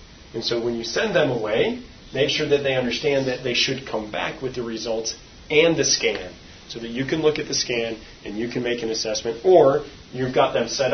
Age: 30-49